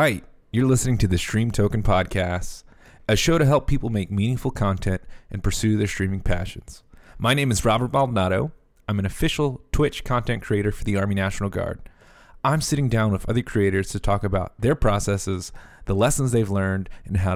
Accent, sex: American, male